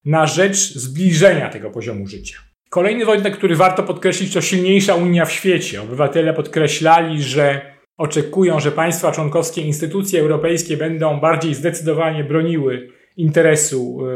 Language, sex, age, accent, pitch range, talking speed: Polish, male, 30-49, native, 140-180 Hz, 125 wpm